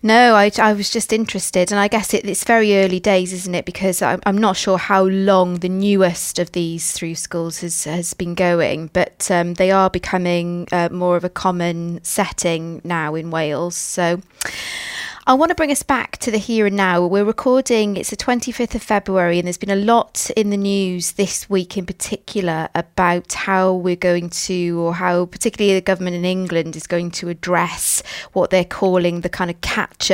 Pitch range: 180-215 Hz